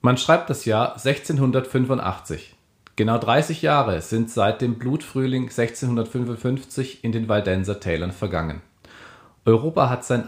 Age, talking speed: 40-59, 115 wpm